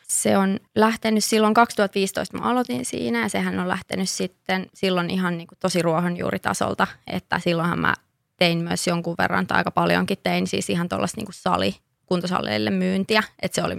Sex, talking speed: female, 160 wpm